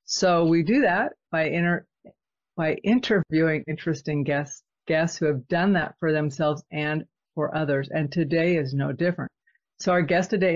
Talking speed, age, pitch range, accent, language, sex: 165 wpm, 50-69, 150-180 Hz, American, English, female